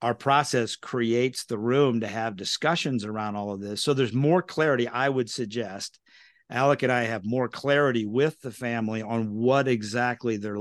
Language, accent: English, American